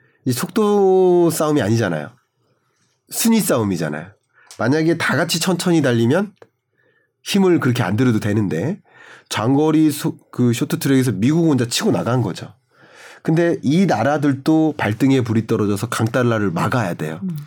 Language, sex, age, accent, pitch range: Korean, male, 30-49, native, 125-180 Hz